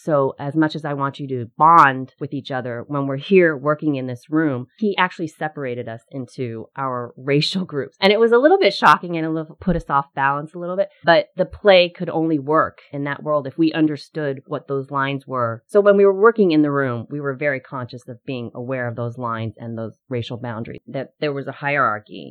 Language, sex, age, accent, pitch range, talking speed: English, female, 30-49, American, 125-175 Hz, 235 wpm